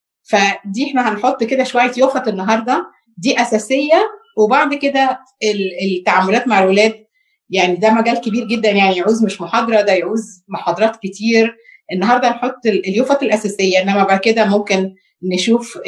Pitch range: 195-245 Hz